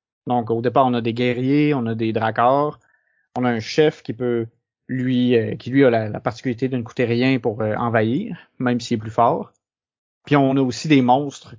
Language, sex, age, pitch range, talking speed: French, male, 30-49, 115-135 Hz, 210 wpm